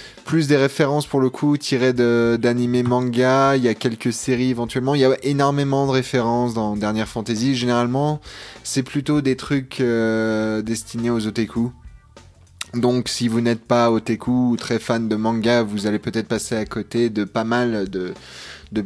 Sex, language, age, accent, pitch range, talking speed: male, French, 20-39, French, 100-125 Hz, 175 wpm